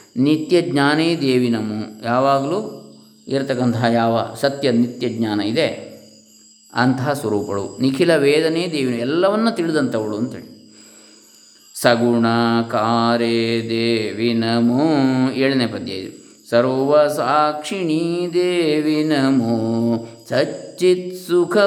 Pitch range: 115-155 Hz